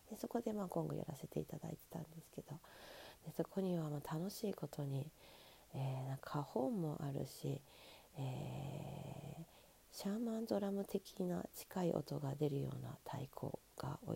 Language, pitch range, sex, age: Japanese, 140-170 Hz, female, 40-59